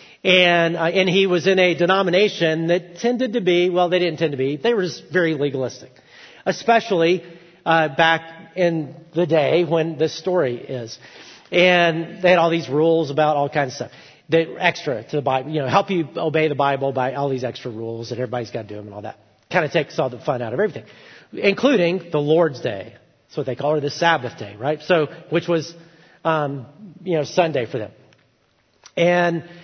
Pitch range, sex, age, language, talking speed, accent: 140-175 Hz, male, 40-59, English, 205 wpm, American